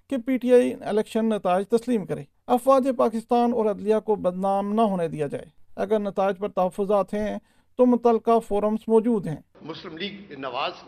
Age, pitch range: 60-79, 190-235 Hz